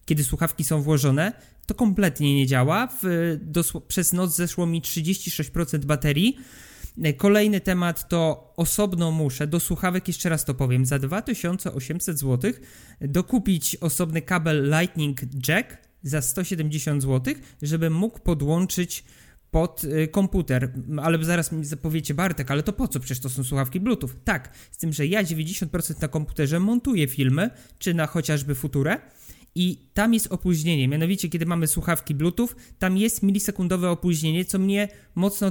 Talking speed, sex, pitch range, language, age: 145 wpm, male, 150-185 Hz, Polish, 20-39